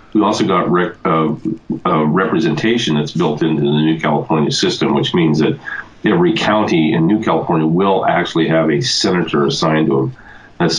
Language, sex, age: English, male, 40-59